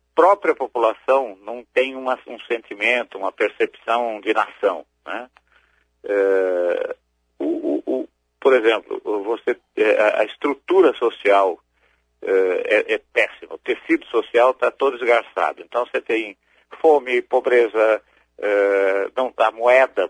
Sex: male